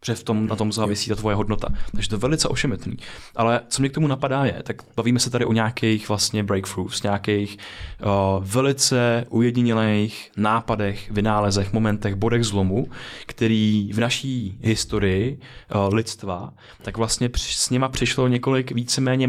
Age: 20-39